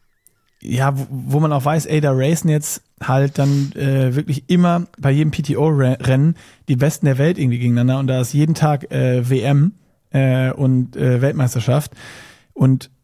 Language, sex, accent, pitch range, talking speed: German, male, German, 135-160 Hz, 160 wpm